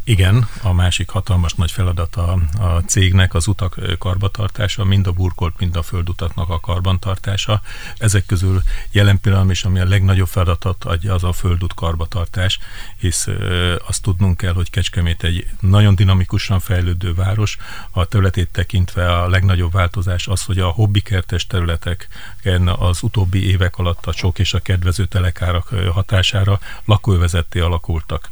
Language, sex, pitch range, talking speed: Hungarian, male, 90-100 Hz, 145 wpm